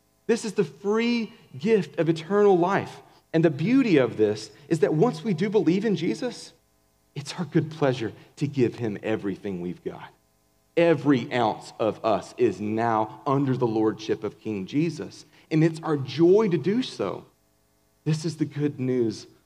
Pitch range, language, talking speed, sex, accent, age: 120-175 Hz, English, 170 wpm, male, American, 40-59